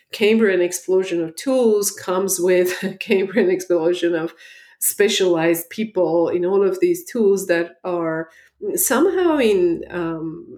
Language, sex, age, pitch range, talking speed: English, female, 40-59, 165-220 Hz, 125 wpm